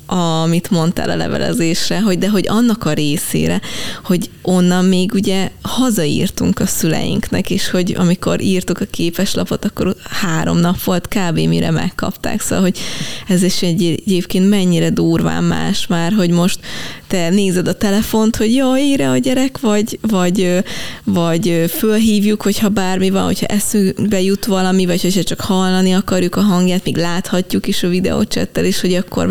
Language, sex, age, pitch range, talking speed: Hungarian, female, 20-39, 170-205 Hz, 155 wpm